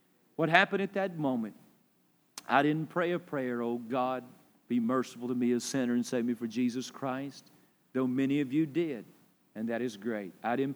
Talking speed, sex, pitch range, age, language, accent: 195 wpm, male, 110-145 Hz, 50-69, English, American